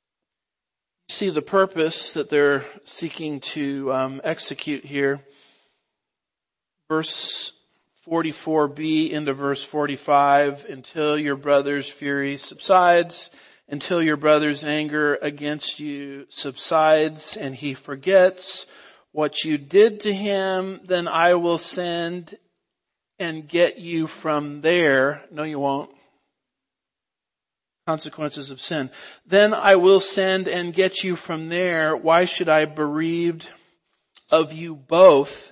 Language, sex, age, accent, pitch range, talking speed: English, male, 50-69, American, 140-170 Hz, 110 wpm